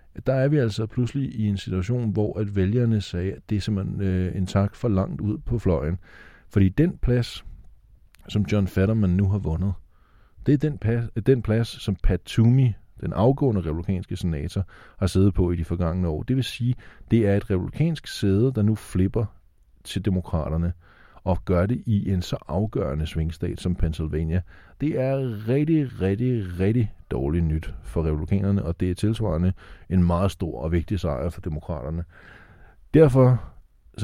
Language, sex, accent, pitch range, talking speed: Danish, male, native, 85-110 Hz, 175 wpm